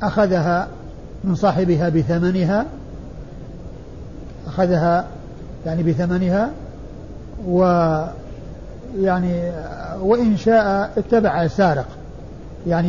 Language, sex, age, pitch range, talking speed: Arabic, male, 50-69, 175-215 Hz, 65 wpm